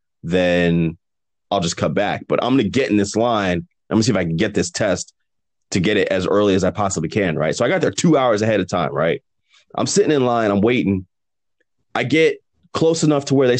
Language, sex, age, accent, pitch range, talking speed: English, male, 30-49, American, 105-155 Hz, 245 wpm